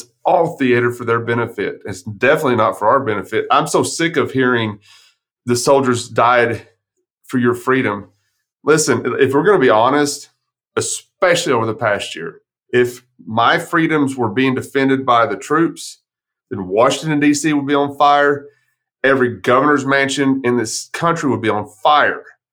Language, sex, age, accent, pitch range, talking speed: English, male, 30-49, American, 120-150 Hz, 155 wpm